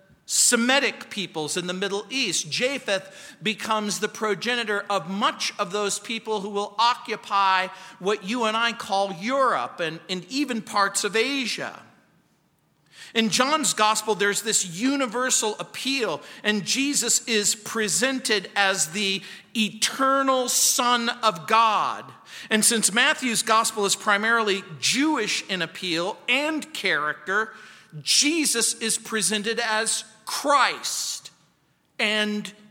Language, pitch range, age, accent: English, 190-245 Hz, 50-69, American